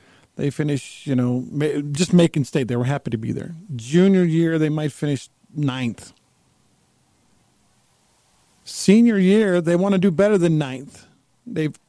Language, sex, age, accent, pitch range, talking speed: English, male, 50-69, American, 115-170 Hz, 145 wpm